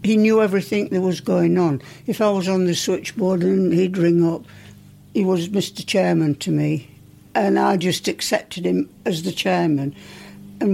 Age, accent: 60-79, British